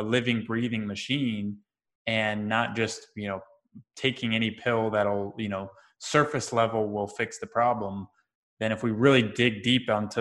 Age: 20-39